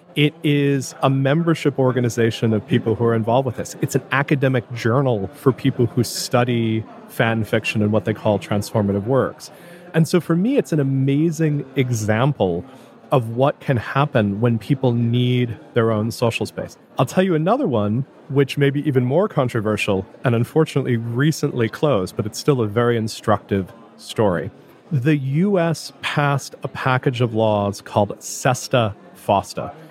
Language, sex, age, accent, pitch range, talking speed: German, male, 40-59, American, 115-145 Hz, 155 wpm